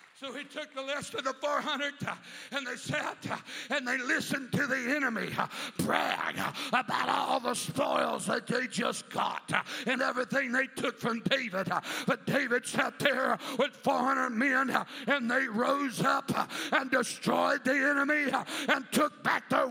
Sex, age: male, 60-79